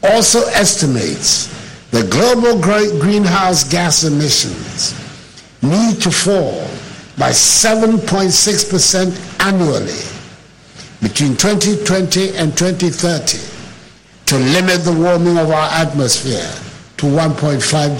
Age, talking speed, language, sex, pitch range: 60-79, 90 wpm, English, male, 155-200 Hz